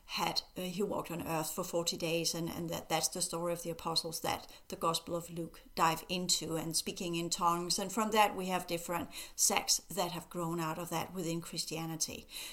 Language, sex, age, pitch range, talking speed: English, female, 60-79, 175-215 Hz, 210 wpm